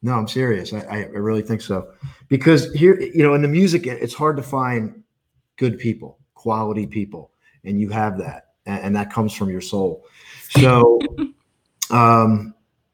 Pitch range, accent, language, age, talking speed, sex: 110-140 Hz, American, English, 40-59, 170 wpm, male